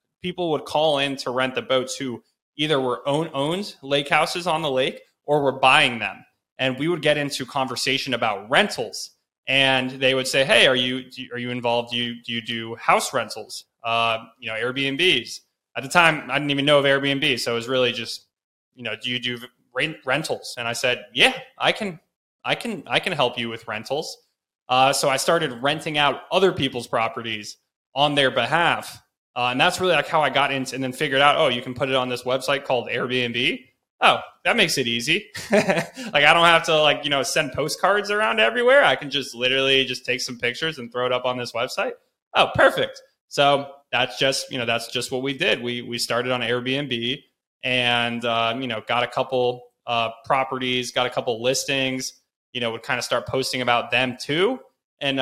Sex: male